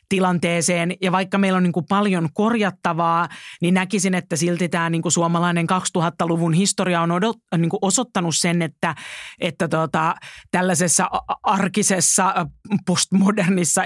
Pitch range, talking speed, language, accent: 170-185 Hz, 120 wpm, Finnish, native